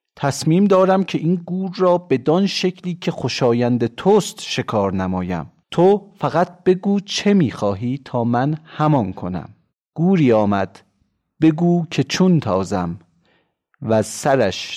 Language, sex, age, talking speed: Persian, male, 40-59, 125 wpm